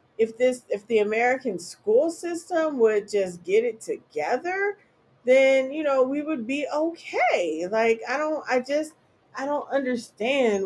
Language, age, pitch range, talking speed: English, 40-59, 190-255 Hz, 150 wpm